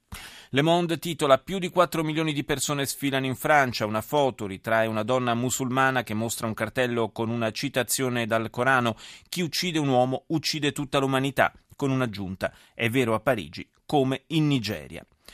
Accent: native